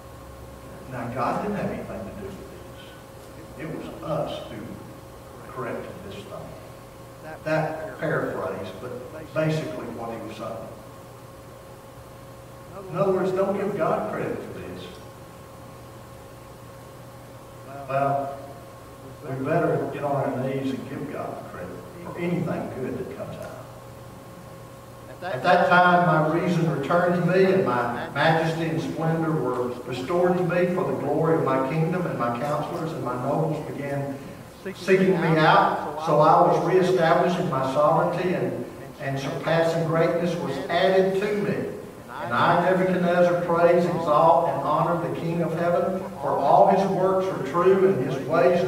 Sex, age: male, 60-79